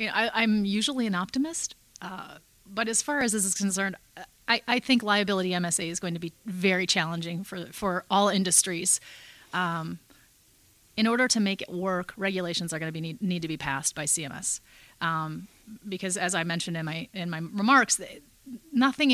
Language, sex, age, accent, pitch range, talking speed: English, female, 30-49, American, 170-205 Hz, 180 wpm